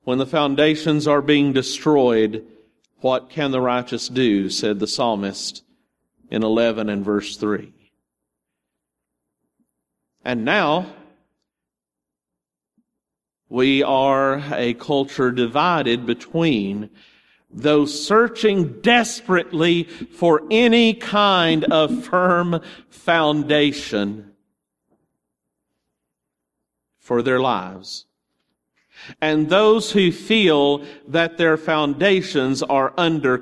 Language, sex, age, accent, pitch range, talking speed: English, male, 50-69, American, 115-180 Hz, 85 wpm